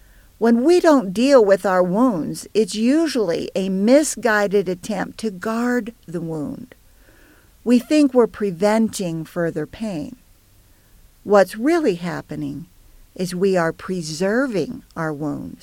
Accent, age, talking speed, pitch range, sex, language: American, 50-69, 120 wpm, 175-245 Hz, female, English